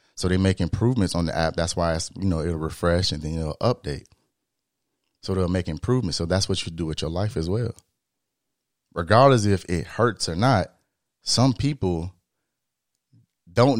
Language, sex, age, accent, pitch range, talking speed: English, male, 30-49, American, 90-110 Hz, 180 wpm